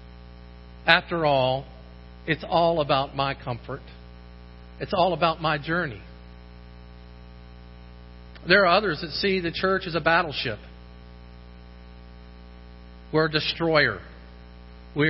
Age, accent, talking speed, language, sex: 50-69, American, 105 wpm, English, male